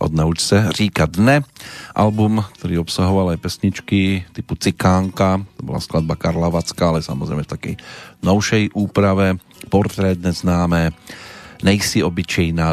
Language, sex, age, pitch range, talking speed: Slovak, male, 40-59, 85-100 Hz, 115 wpm